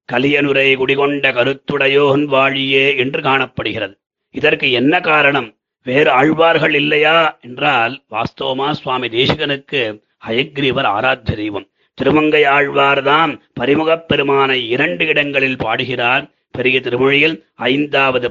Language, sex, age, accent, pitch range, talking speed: Tamil, male, 30-49, native, 130-145 Hz, 90 wpm